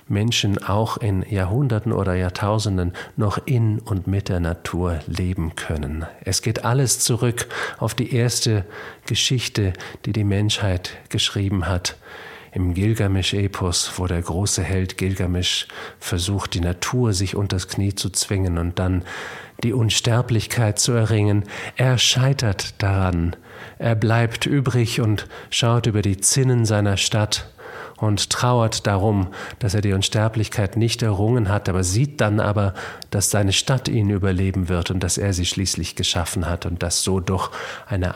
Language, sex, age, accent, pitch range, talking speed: English, male, 40-59, German, 90-110 Hz, 145 wpm